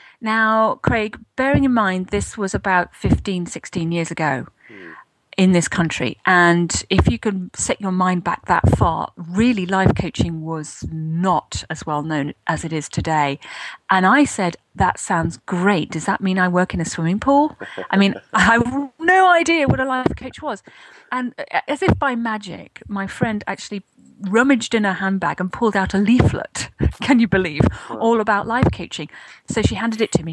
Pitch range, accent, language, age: 175-225 Hz, British, English, 40-59